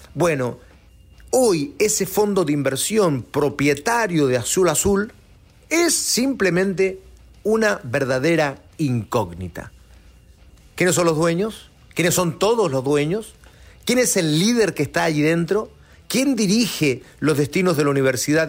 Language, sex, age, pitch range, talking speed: Spanish, male, 40-59, 130-195 Hz, 125 wpm